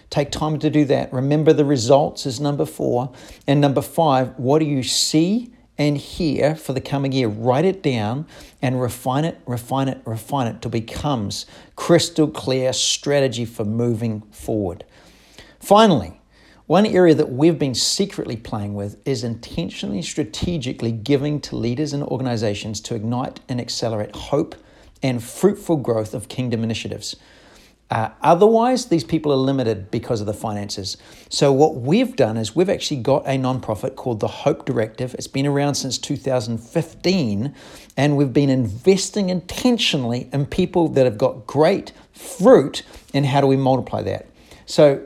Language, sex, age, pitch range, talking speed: English, male, 40-59, 115-150 Hz, 155 wpm